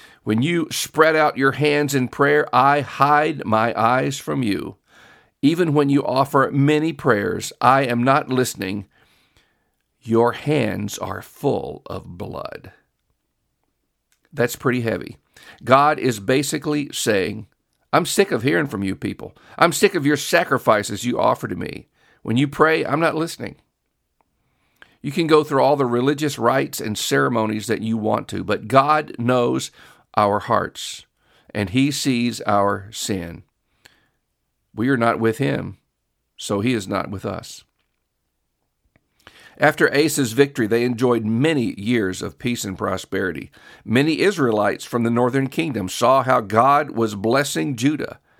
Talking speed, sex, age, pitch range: 145 wpm, male, 50-69, 110-145 Hz